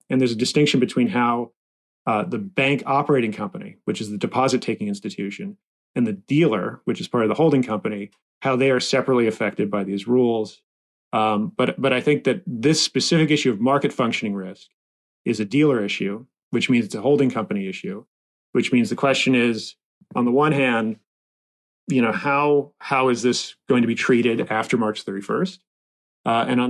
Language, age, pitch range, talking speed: English, 30-49, 110-135 Hz, 185 wpm